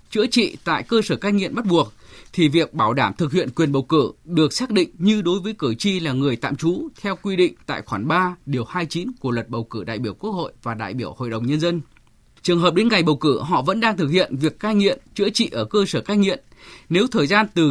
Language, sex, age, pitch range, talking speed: Vietnamese, male, 20-39, 140-205 Hz, 265 wpm